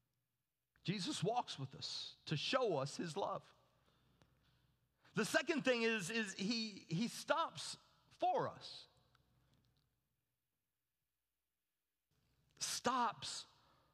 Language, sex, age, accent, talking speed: English, male, 50-69, American, 85 wpm